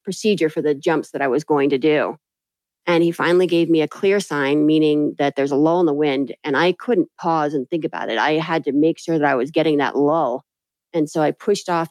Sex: female